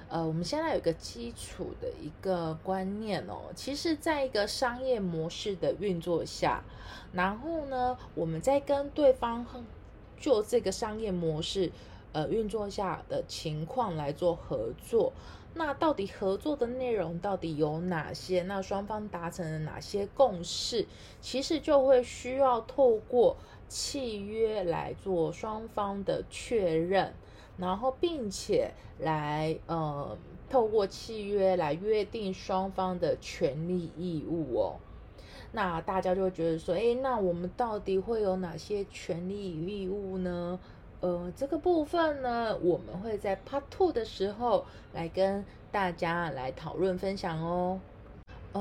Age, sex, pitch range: 20-39, female, 170-245 Hz